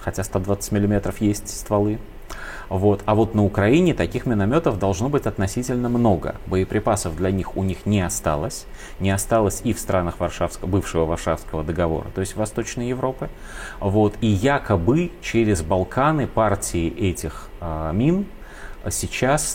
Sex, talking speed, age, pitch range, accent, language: male, 130 wpm, 30-49, 90-115 Hz, native, Russian